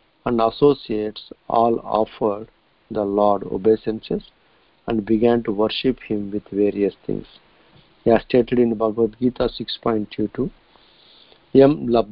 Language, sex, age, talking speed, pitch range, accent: English, male, 50-69, 105 wpm, 110-125 Hz, Indian